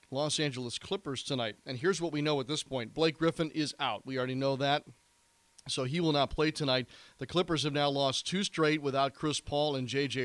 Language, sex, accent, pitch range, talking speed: English, male, American, 120-150 Hz, 225 wpm